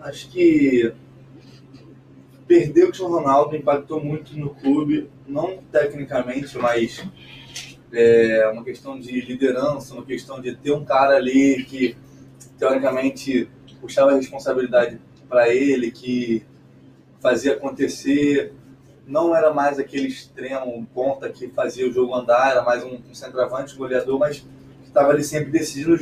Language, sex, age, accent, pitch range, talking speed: Portuguese, male, 20-39, Brazilian, 130-160 Hz, 135 wpm